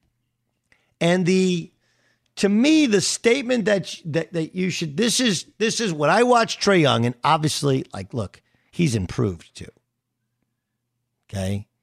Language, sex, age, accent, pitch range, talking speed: English, male, 50-69, American, 120-165 Hz, 145 wpm